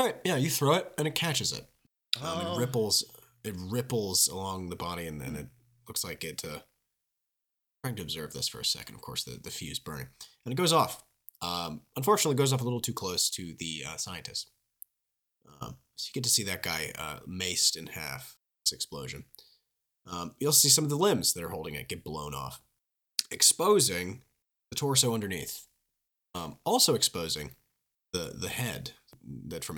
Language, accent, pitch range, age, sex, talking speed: English, American, 90-140 Hz, 30-49, male, 190 wpm